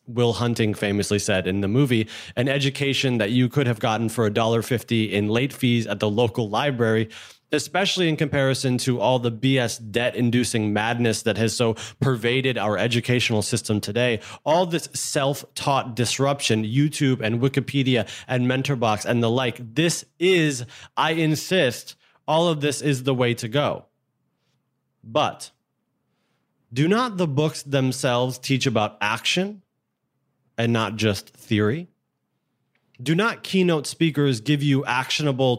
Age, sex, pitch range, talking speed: 30-49, male, 115-150 Hz, 140 wpm